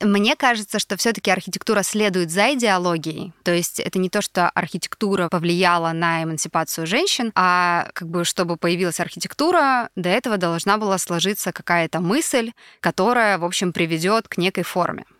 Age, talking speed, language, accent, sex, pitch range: 20-39, 155 wpm, Russian, native, female, 170-205 Hz